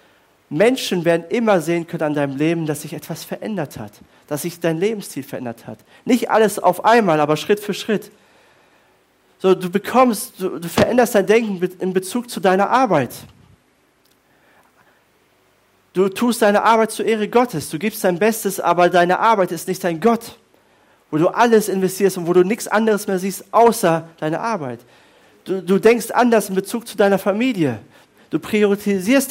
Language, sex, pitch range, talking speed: German, male, 160-210 Hz, 170 wpm